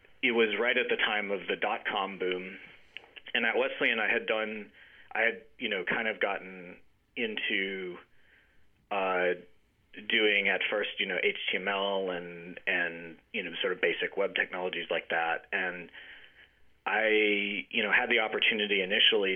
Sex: male